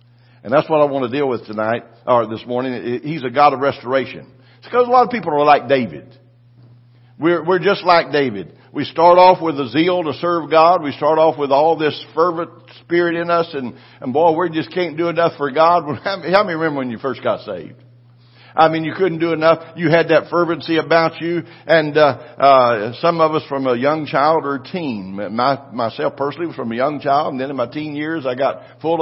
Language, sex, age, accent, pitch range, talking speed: English, male, 60-79, American, 120-160 Hz, 230 wpm